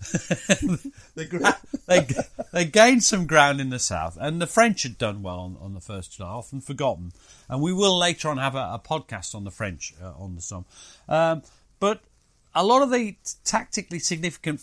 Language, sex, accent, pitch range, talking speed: English, male, British, 115-180 Hz, 190 wpm